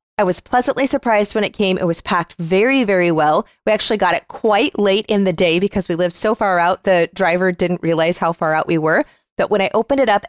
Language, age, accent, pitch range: English, 20-39, American, 185-235 Hz